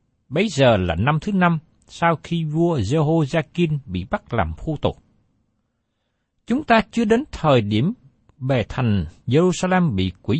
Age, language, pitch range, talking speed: 60-79, Vietnamese, 110-185 Hz, 155 wpm